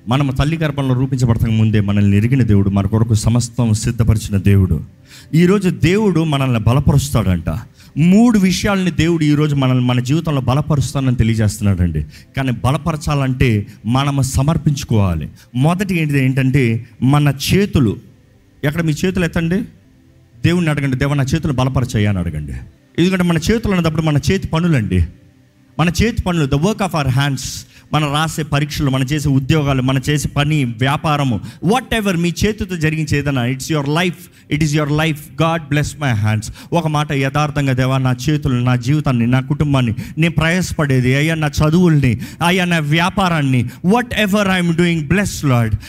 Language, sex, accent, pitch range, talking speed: Telugu, male, native, 125-170 Hz, 145 wpm